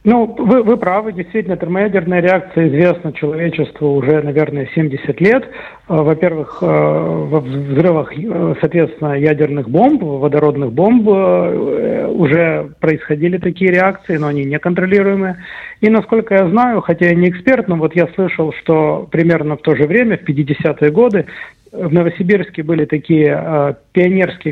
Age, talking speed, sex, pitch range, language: 40-59, 135 wpm, male, 150-180 Hz, English